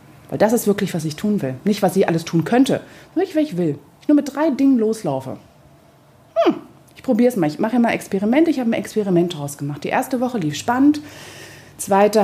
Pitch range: 160-215 Hz